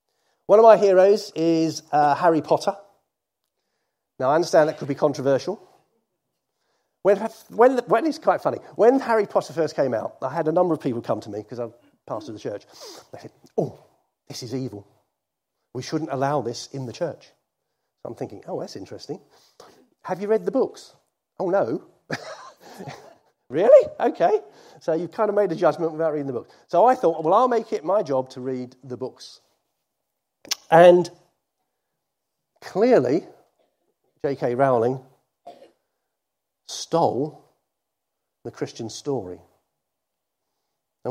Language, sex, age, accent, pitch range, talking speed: English, male, 40-59, British, 120-165 Hz, 150 wpm